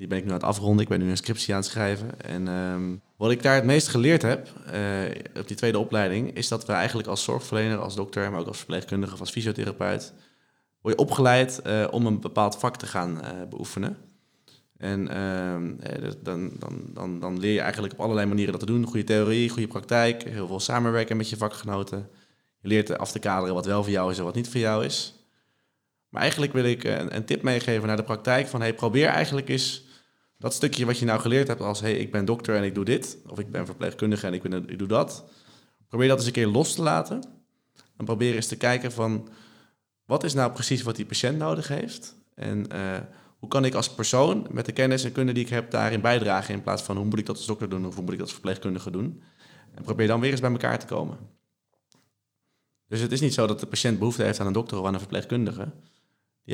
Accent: Dutch